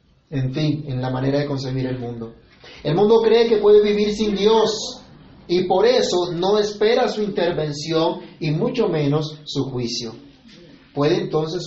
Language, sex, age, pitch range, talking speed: Spanish, male, 30-49, 150-215 Hz, 160 wpm